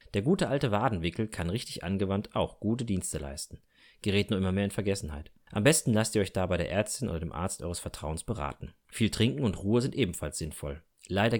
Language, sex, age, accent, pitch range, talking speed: German, male, 30-49, German, 90-115 Hz, 210 wpm